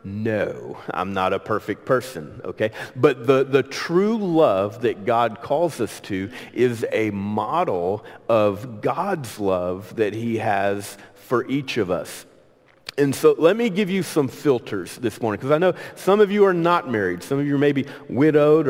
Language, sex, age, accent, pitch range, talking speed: English, male, 40-59, American, 105-155 Hz, 175 wpm